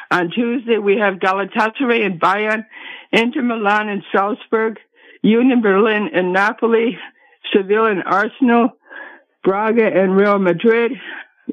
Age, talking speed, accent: 60-79, 115 wpm, American